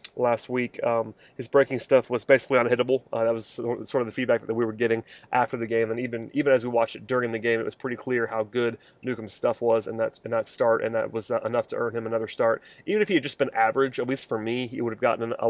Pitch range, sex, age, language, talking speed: 115-125 Hz, male, 30-49, English, 280 wpm